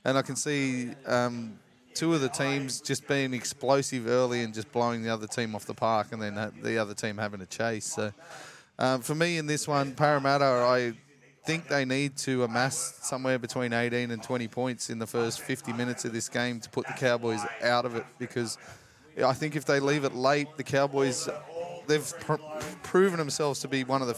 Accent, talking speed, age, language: Australian, 210 wpm, 20-39, English